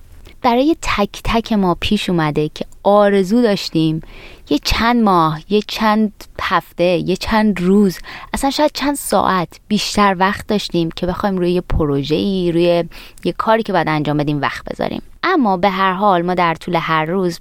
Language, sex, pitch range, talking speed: Persian, female, 160-215 Hz, 165 wpm